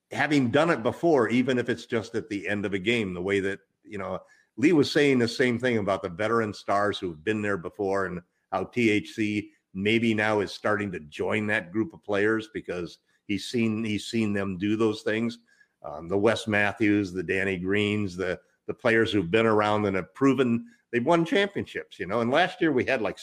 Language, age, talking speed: English, 50-69, 210 wpm